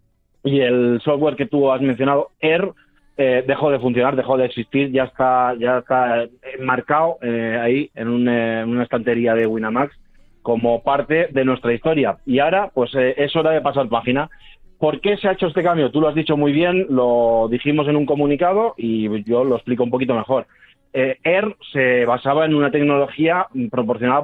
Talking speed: 190 wpm